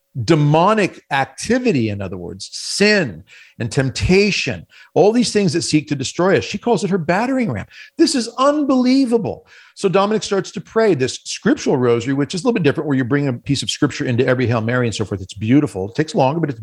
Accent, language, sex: American, English, male